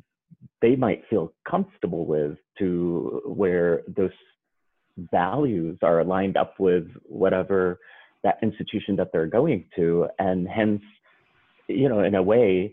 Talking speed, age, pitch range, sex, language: 125 wpm, 30-49, 95-130 Hz, male, English